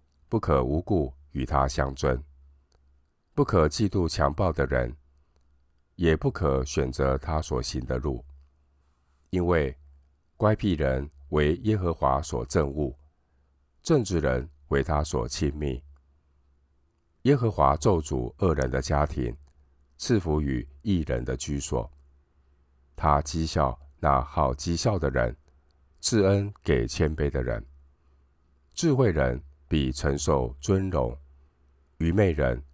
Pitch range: 70-75 Hz